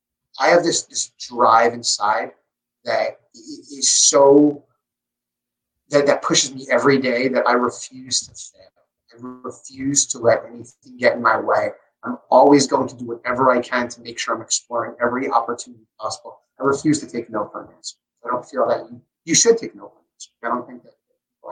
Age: 30-49